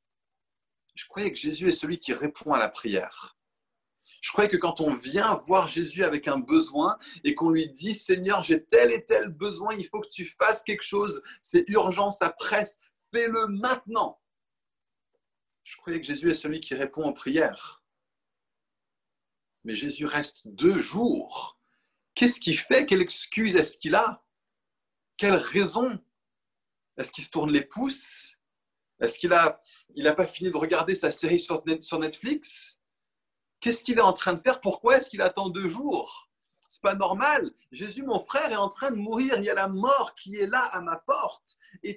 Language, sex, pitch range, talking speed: French, male, 170-270 Hz, 180 wpm